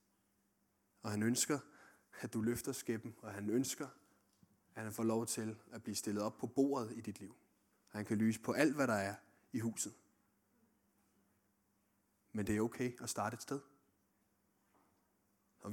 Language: Danish